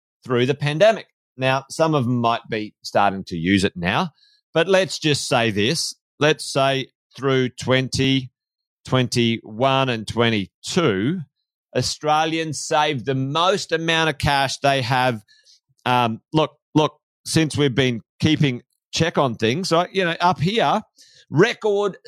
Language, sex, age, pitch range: English, male, 30-49, 125-170 Hz